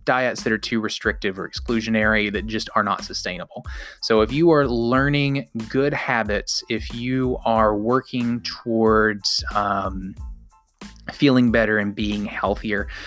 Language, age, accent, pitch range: English, 20-39, American, 105-120 Hz